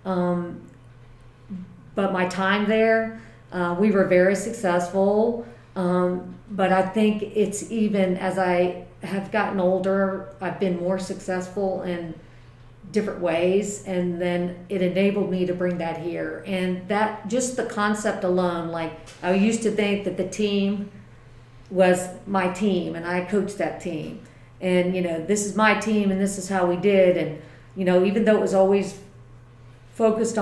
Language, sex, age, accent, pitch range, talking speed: English, female, 40-59, American, 165-195 Hz, 160 wpm